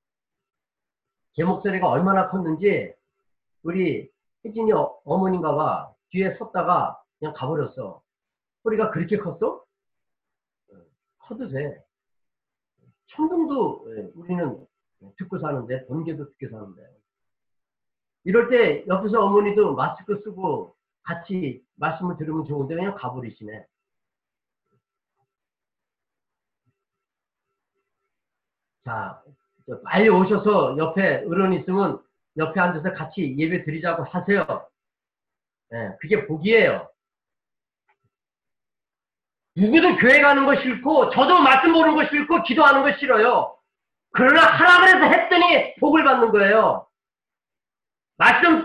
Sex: male